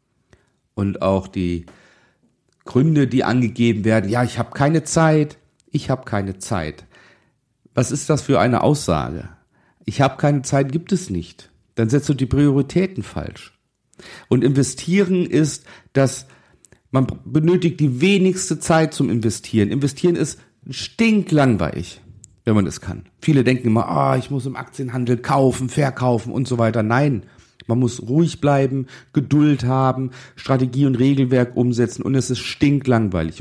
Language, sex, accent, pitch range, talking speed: German, male, German, 95-135 Hz, 150 wpm